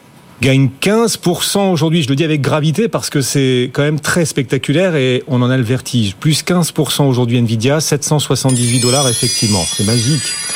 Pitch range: 120-155 Hz